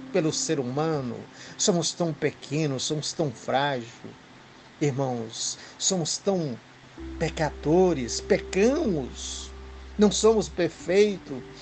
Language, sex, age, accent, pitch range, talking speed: Portuguese, male, 60-79, Brazilian, 130-180 Hz, 90 wpm